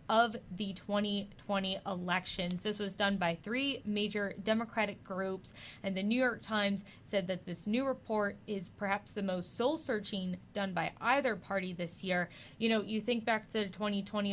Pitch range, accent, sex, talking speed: 185-215 Hz, American, female, 170 wpm